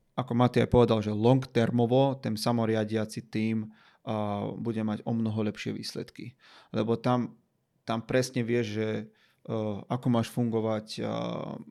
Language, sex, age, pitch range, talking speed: Slovak, male, 30-49, 110-125 Hz, 140 wpm